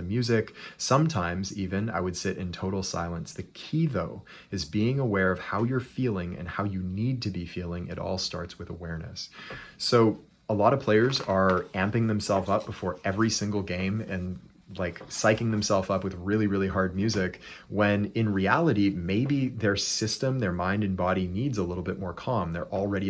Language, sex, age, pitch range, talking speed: English, male, 30-49, 90-110 Hz, 185 wpm